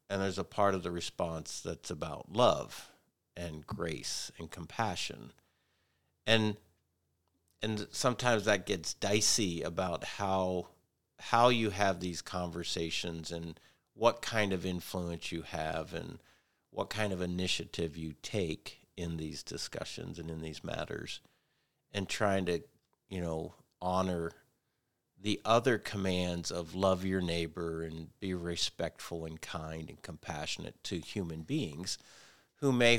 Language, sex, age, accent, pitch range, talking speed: English, male, 50-69, American, 85-105 Hz, 135 wpm